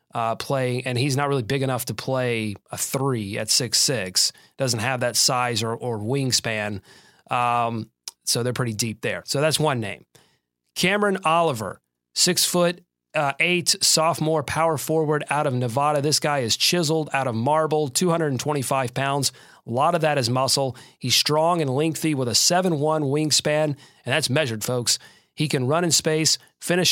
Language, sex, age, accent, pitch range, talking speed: English, male, 30-49, American, 125-155 Hz, 175 wpm